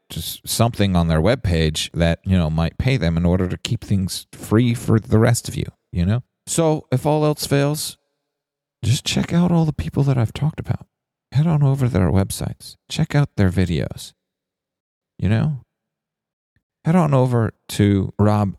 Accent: American